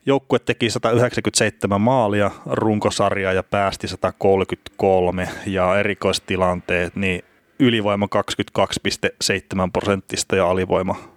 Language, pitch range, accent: Finnish, 95-110 Hz, native